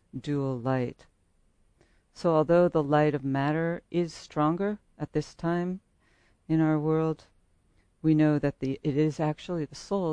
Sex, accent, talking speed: female, American, 150 wpm